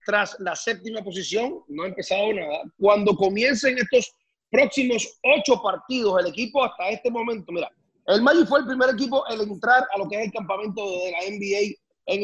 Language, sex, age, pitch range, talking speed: English, male, 30-49, 205-255 Hz, 185 wpm